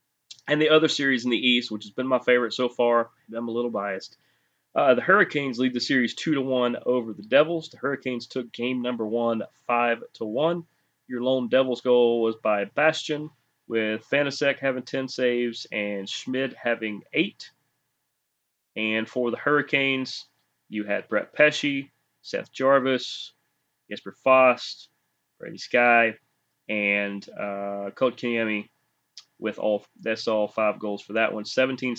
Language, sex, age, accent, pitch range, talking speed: English, male, 30-49, American, 110-140 Hz, 160 wpm